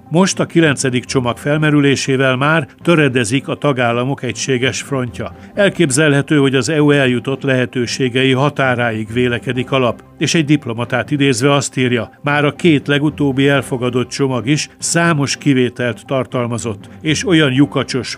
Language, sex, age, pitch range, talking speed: Hungarian, male, 60-79, 125-145 Hz, 130 wpm